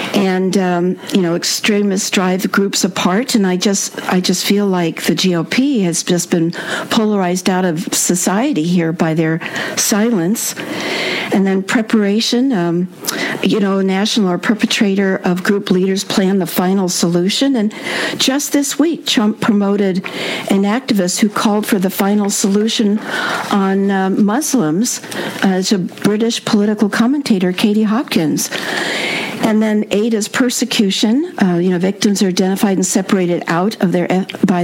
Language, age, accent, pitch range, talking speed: English, 50-69, American, 185-230 Hz, 150 wpm